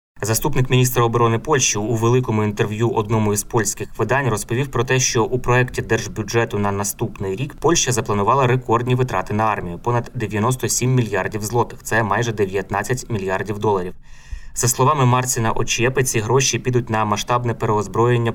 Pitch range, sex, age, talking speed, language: 105-125 Hz, male, 20-39, 155 wpm, Ukrainian